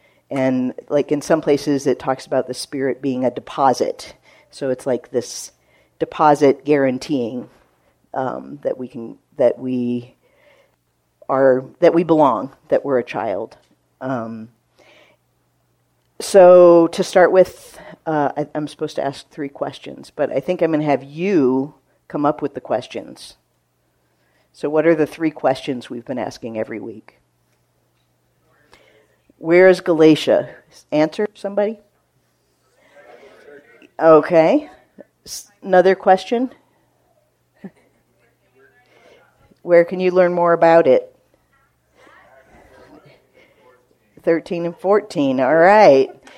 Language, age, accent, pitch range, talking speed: English, 50-69, American, 130-180 Hz, 115 wpm